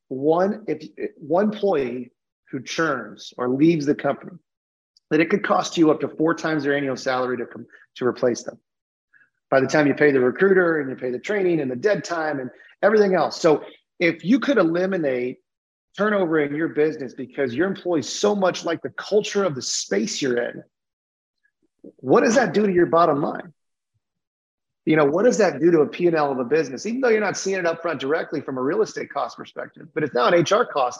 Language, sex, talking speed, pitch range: English, male, 215 wpm, 140-185 Hz